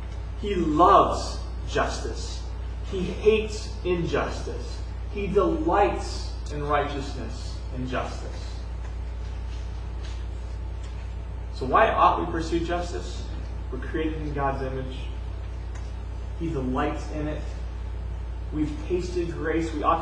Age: 30-49